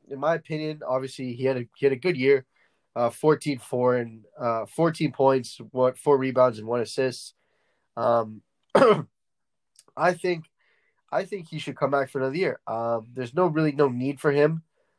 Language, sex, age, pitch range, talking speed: English, male, 10-29, 120-150 Hz, 175 wpm